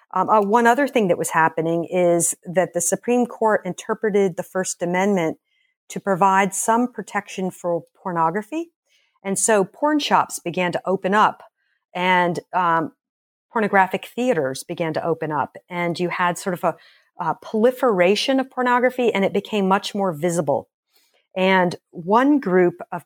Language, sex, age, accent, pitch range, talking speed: English, female, 50-69, American, 175-215 Hz, 155 wpm